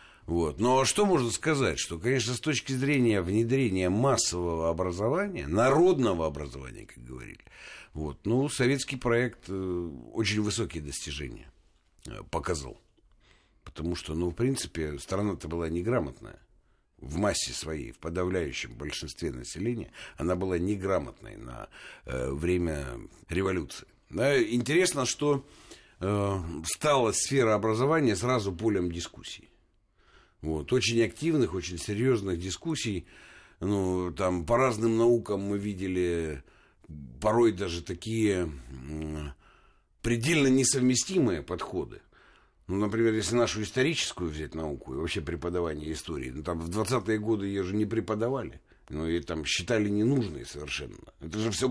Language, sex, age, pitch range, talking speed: Russian, male, 60-79, 85-120 Hz, 120 wpm